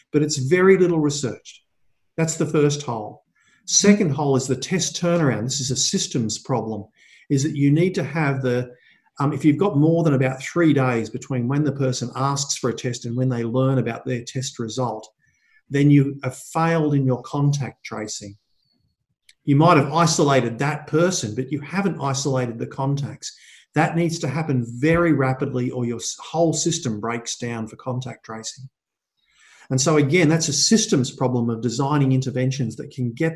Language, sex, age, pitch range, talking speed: English, male, 50-69, 125-155 Hz, 180 wpm